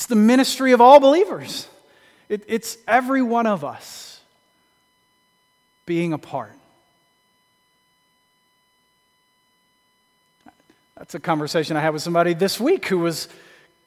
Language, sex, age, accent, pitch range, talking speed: English, male, 40-59, American, 170-210 Hz, 110 wpm